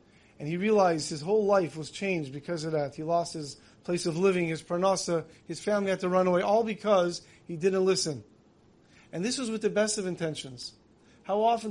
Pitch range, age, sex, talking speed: 165-205 Hz, 40-59, male, 205 wpm